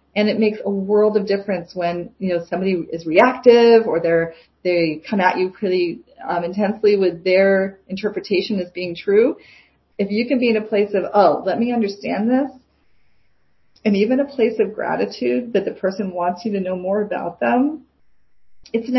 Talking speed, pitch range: 185 wpm, 180-230 Hz